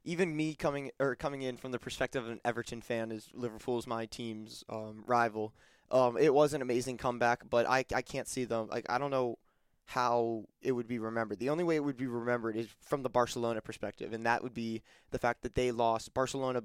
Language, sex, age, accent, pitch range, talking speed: English, male, 20-39, American, 115-130 Hz, 225 wpm